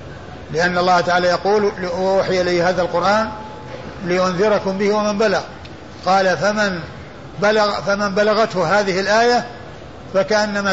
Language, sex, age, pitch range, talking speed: Arabic, male, 50-69, 175-200 Hz, 110 wpm